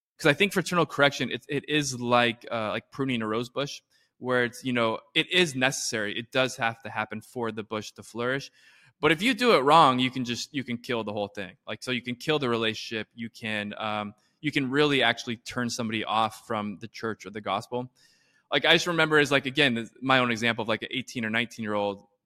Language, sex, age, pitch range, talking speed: English, male, 20-39, 115-150 Hz, 240 wpm